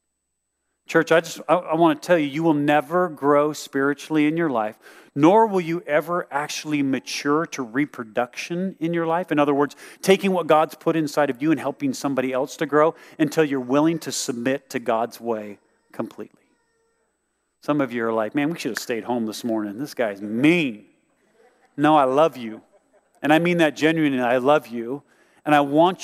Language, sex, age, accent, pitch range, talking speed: English, male, 40-59, American, 130-170 Hz, 190 wpm